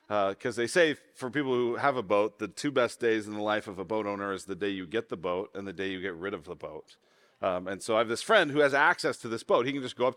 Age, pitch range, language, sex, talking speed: 40-59, 110-145 Hz, English, male, 325 wpm